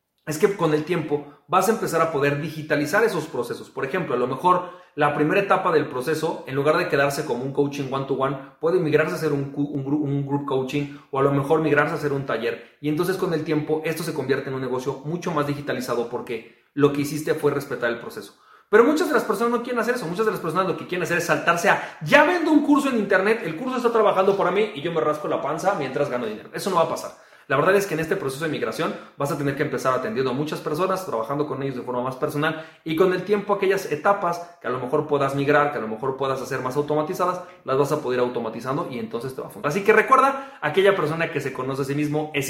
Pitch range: 145-195 Hz